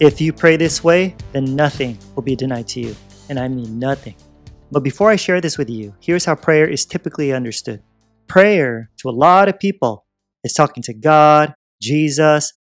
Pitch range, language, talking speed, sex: 130-165 Hz, English, 190 wpm, male